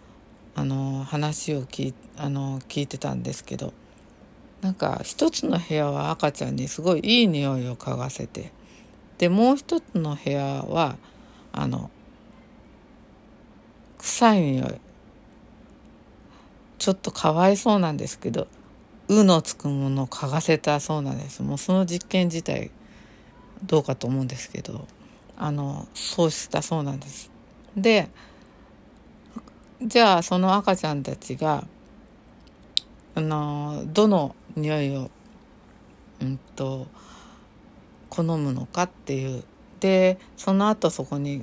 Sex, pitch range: female, 140-195 Hz